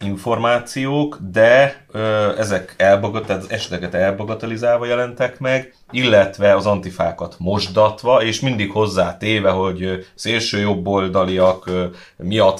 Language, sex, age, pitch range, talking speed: Hungarian, male, 30-49, 95-110 Hz, 100 wpm